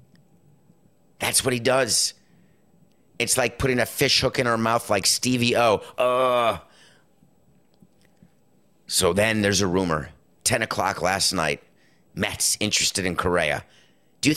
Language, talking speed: English, 135 wpm